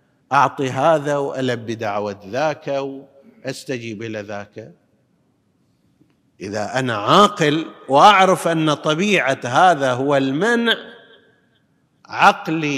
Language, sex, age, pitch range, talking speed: Arabic, male, 50-69, 135-205 Hz, 85 wpm